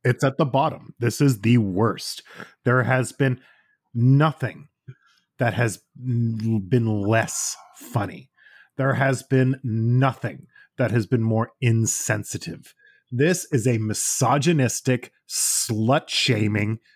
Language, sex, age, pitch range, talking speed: English, male, 30-49, 130-195 Hz, 110 wpm